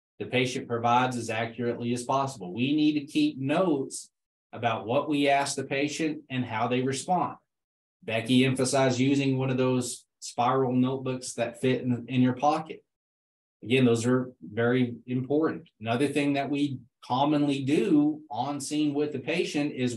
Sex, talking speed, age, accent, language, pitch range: male, 160 wpm, 20-39, American, English, 120-140 Hz